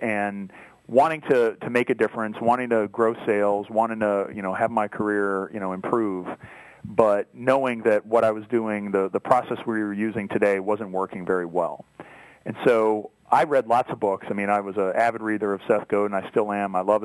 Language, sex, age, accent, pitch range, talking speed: English, male, 40-59, American, 100-115 Hz, 220 wpm